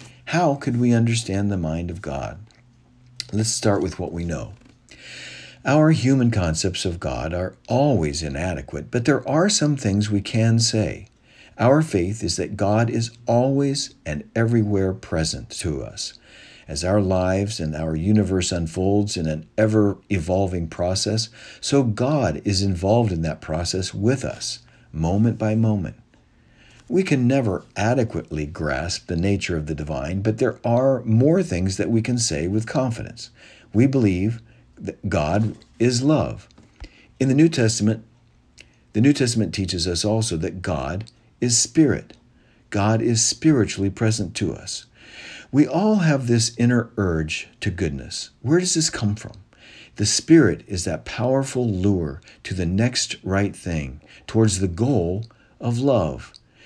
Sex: male